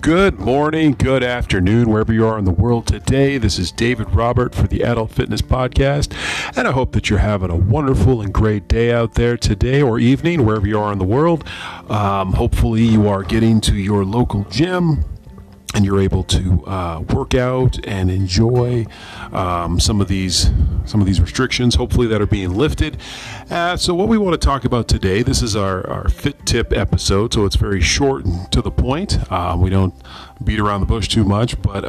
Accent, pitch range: American, 95-115 Hz